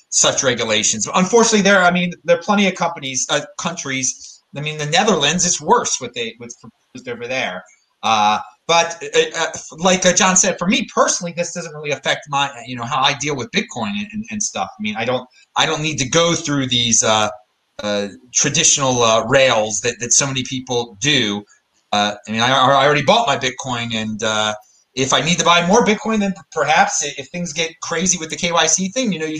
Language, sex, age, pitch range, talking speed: English, male, 30-49, 140-215 Hz, 210 wpm